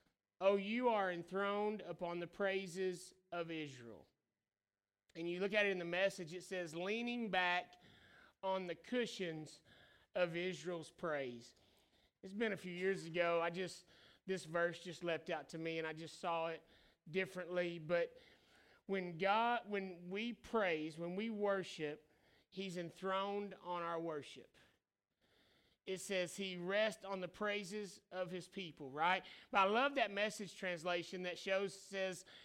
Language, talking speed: English, 150 wpm